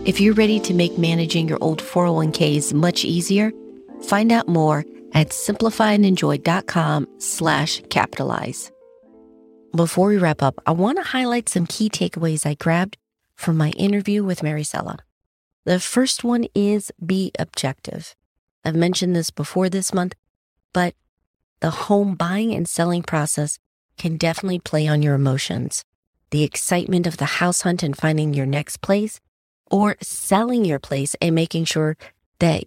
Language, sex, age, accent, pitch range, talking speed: English, female, 40-59, American, 150-195 Hz, 145 wpm